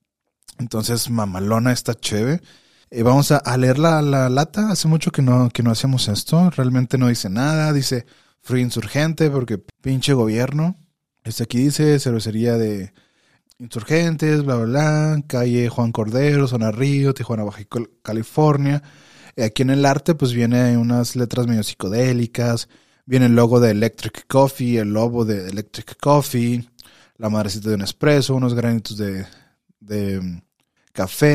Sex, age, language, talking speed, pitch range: male, 30-49, Spanish, 150 wpm, 115-140 Hz